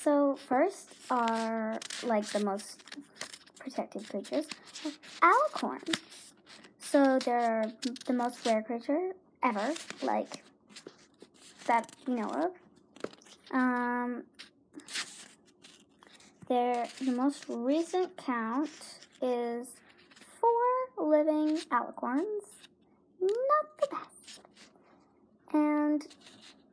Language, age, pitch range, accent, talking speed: English, 10-29, 230-300 Hz, American, 80 wpm